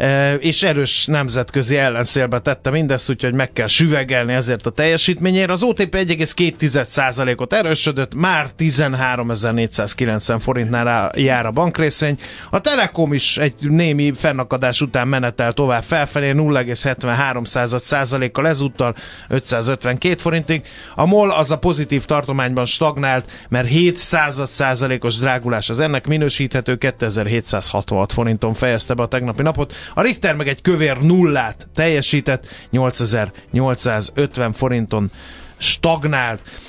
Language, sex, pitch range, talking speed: Hungarian, male, 125-155 Hz, 110 wpm